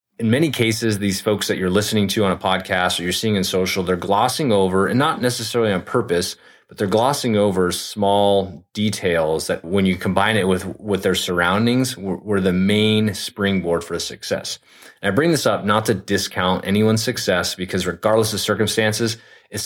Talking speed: 190 wpm